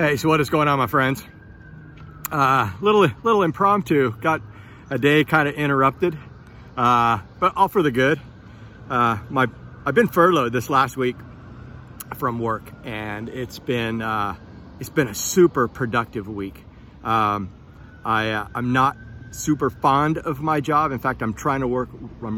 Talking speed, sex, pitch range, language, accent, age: 165 wpm, male, 105-135 Hz, English, American, 40-59